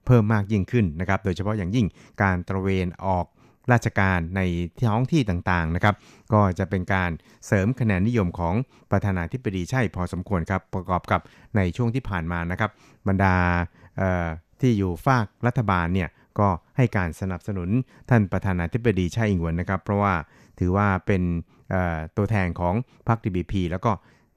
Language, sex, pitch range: Thai, male, 90-110 Hz